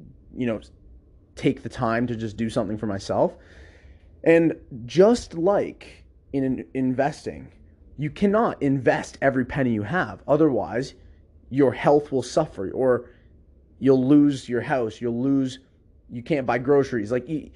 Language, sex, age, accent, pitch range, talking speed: English, male, 30-49, American, 105-145 Hz, 135 wpm